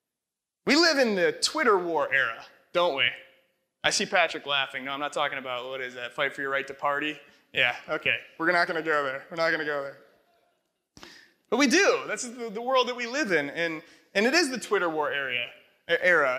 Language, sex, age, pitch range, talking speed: English, male, 30-49, 145-230 Hz, 210 wpm